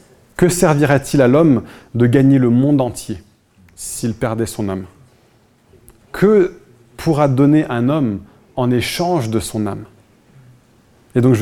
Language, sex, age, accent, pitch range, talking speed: French, male, 20-39, French, 120-155 Hz, 135 wpm